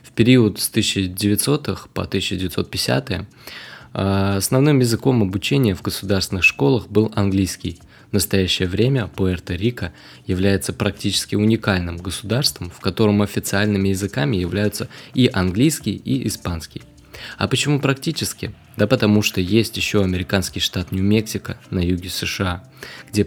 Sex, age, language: male, 20-39, Russian